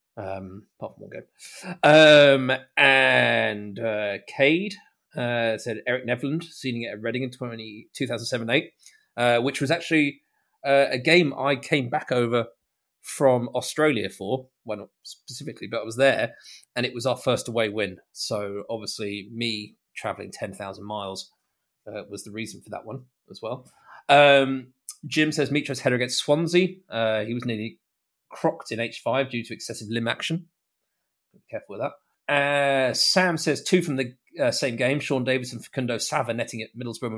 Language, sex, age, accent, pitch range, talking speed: English, male, 30-49, British, 115-140 Hz, 170 wpm